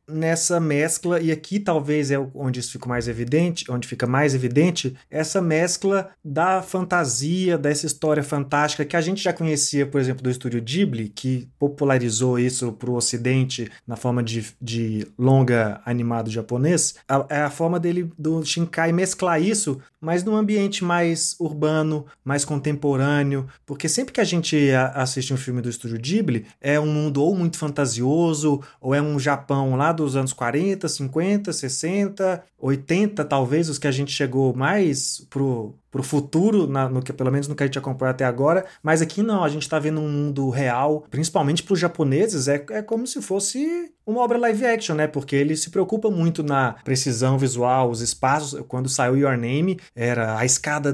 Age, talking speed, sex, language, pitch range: 20-39, 180 wpm, male, Portuguese, 130-165 Hz